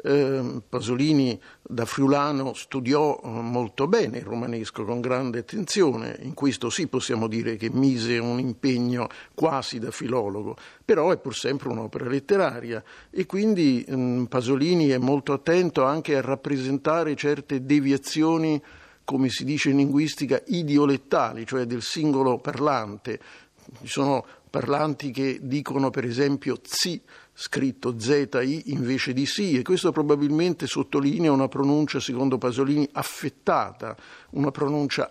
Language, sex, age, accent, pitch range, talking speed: Italian, male, 50-69, native, 130-150 Hz, 125 wpm